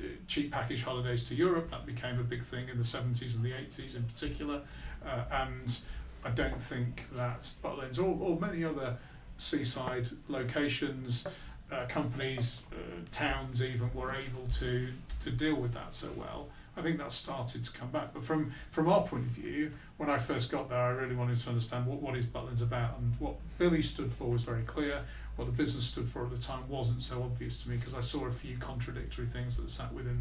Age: 40-59